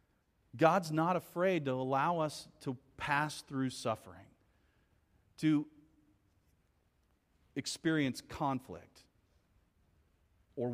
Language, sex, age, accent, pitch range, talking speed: English, male, 40-59, American, 100-155 Hz, 80 wpm